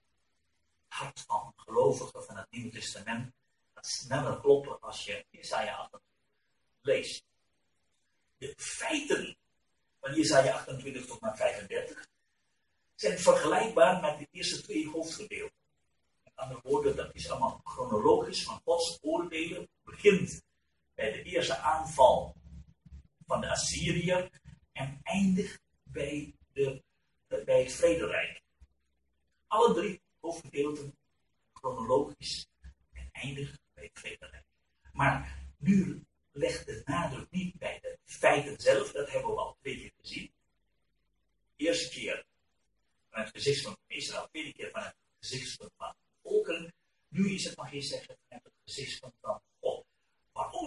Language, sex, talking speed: Turkish, male, 130 wpm